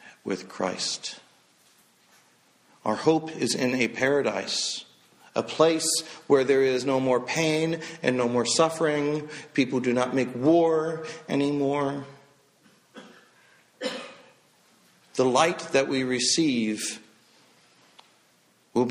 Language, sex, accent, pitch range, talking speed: English, male, American, 125-150 Hz, 100 wpm